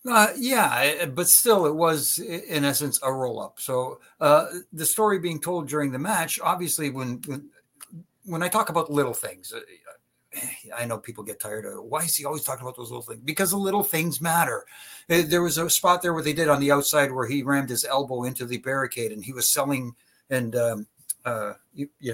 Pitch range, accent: 140-175 Hz, American